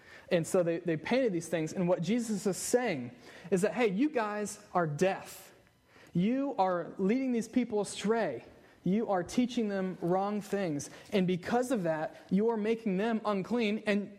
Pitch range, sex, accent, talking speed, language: 160-205 Hz, male, American, 175 wpm, English